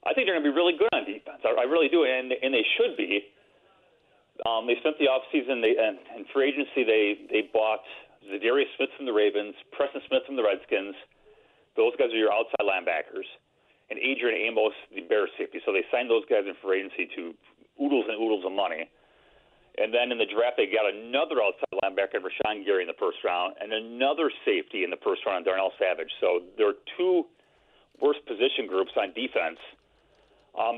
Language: English